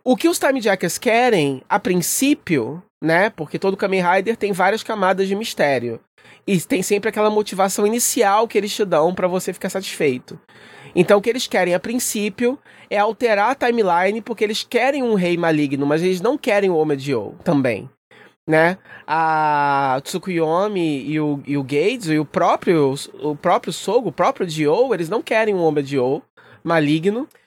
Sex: male